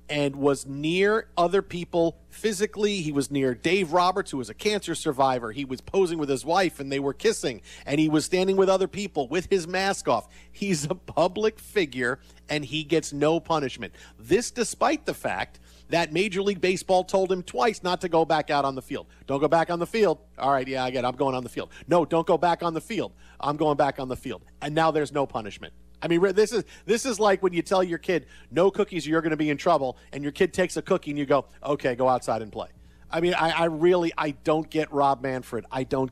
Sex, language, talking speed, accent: male, English, 240 wpm, American